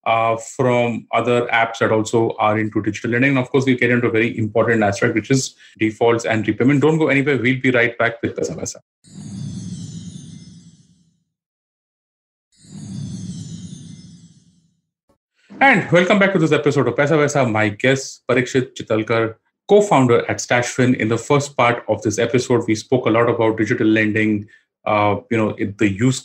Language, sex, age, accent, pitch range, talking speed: English, male, 30-49, Indian, 110-145 Hz, 155 wpm